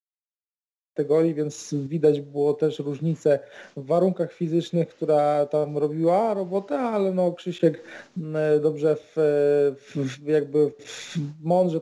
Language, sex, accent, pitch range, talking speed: Polish, male, native, 150-165 Hz, 110 wpm